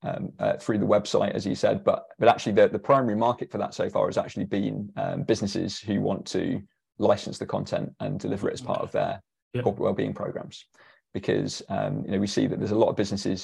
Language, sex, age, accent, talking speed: English, male, 20-39, British, 230 wpm